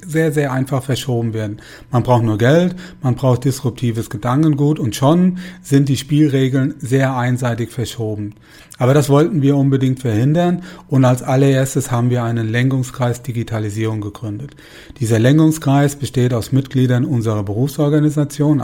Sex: male